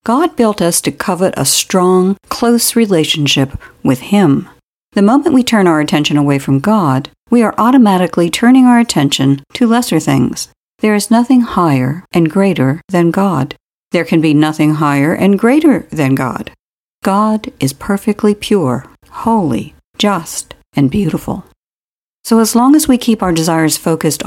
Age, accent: 60-79, American